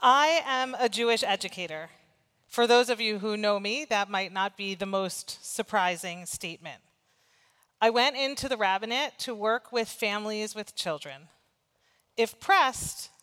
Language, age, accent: English, 40-59, American